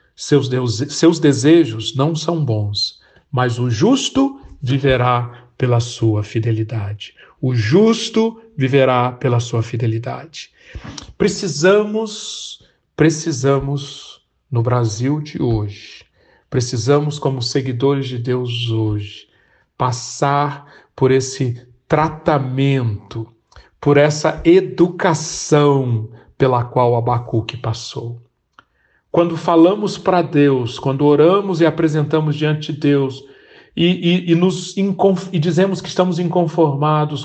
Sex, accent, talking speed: male, Brazilian, 100 wpm